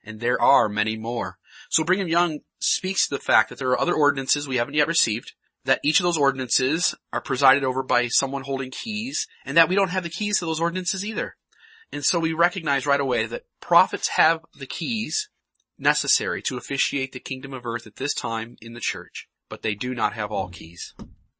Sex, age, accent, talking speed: male, 30-49, American, 210 wpm